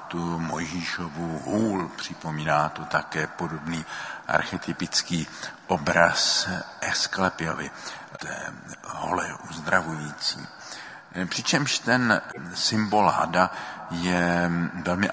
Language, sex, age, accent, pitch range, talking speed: Czech, male, 50-69, native, 85-120 Hz, 75 wpm